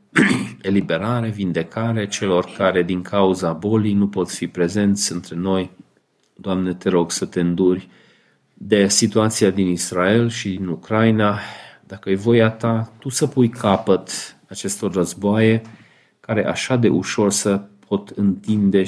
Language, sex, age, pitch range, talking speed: Romanian, male, 40-59, 95-110 Hz, 135 wpm